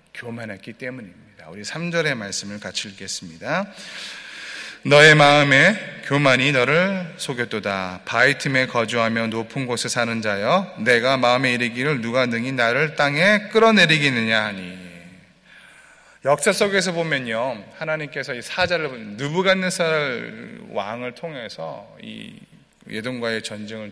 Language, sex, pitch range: Korean, male, 110-155 Hz